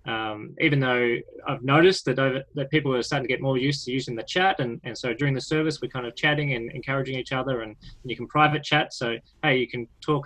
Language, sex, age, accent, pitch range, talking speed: English, male, 20-39, Australian, 120-145 Hz, 255 wpm